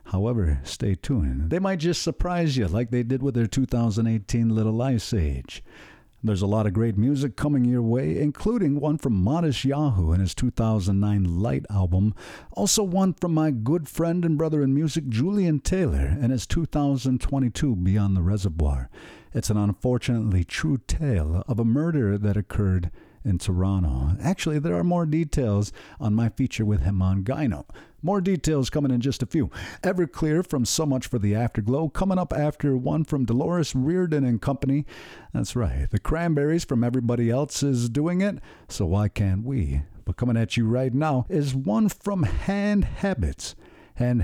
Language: English